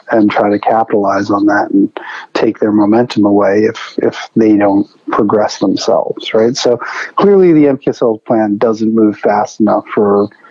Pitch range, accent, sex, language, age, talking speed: 105-130 Hz, American, male, English, 40-59, 160 wpm